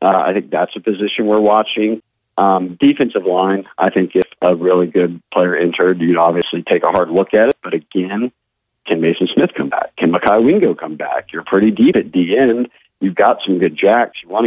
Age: 40-59